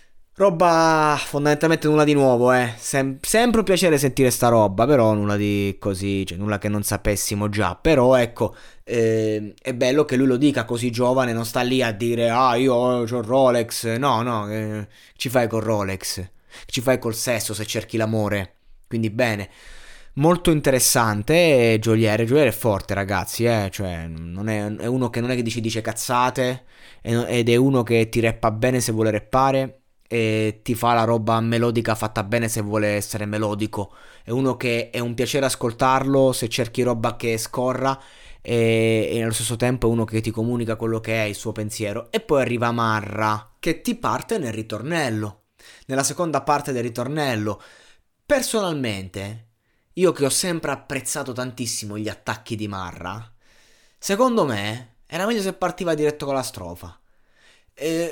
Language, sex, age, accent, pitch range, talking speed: Italian, male, 20-39, native, 110-135 Hz, 175 wpm